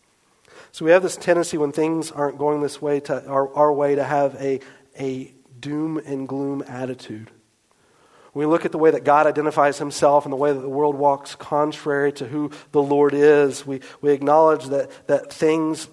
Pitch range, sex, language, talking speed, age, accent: 130-150 Hz, male, English, 190 wpm, 40-59, American